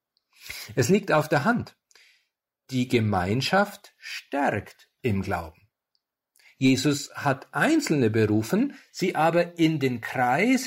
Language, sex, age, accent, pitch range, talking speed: German, male, 50-69, German, 120-165 Hz, 105 wpm